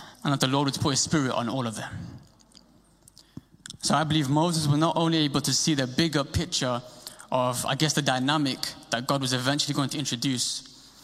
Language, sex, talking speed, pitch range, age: English, male, 200 wpm, 125-155 Hz, 20-39